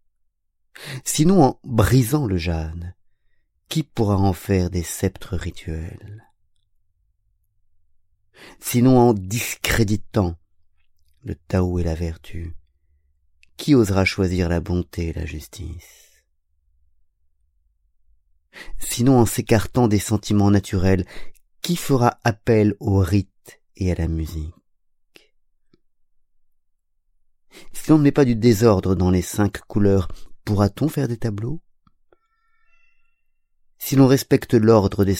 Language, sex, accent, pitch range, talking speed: French, male, French, 85-115 Hz, 105 wpm